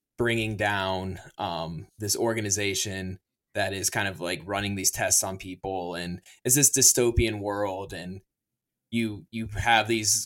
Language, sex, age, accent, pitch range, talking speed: English, male, 20-39, American, 105-125 Hz, 145 wpm